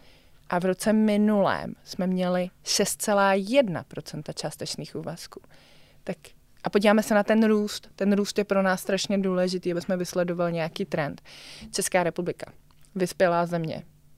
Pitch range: 160-190 Hz